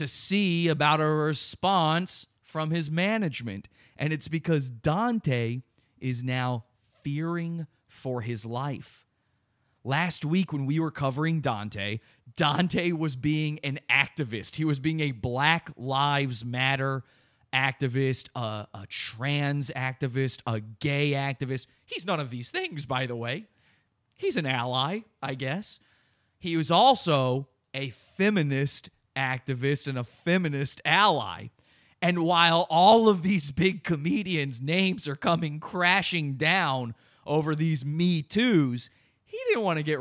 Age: 30-49